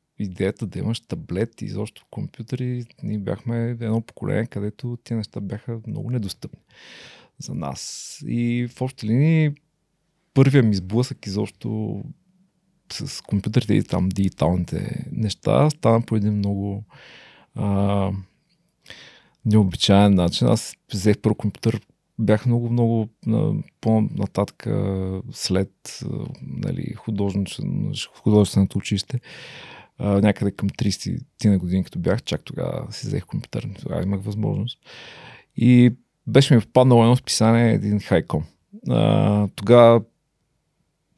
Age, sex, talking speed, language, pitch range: 40-59, male, 110 wpm, Bulgarian, 100-120 Hz